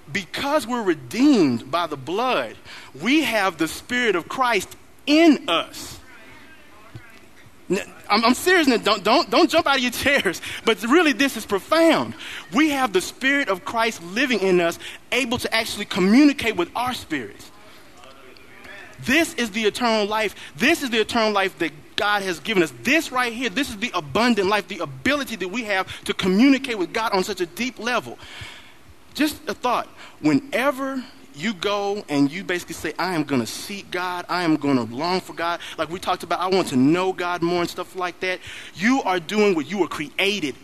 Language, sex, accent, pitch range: English, male, American, 185-265 Hz